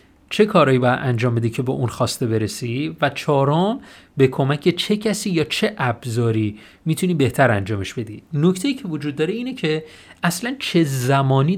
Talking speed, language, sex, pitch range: 165 wpm, Persian, male, 115-155 Hz